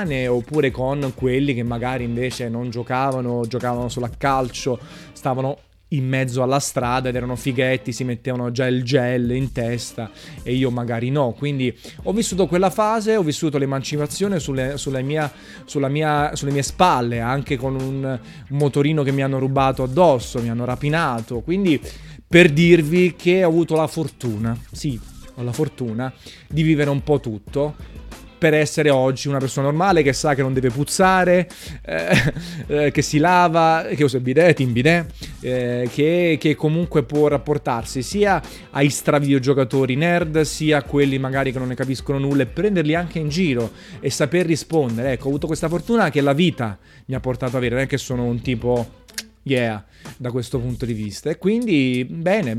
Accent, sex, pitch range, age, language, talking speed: native, male, 125-160 Hz, 20-39, Italian, 175 wpm